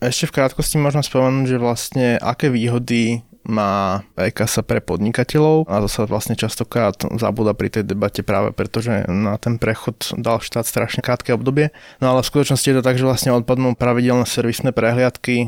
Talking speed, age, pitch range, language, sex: 180 wpm, 20-39, 105-125 Hz, Slovak, male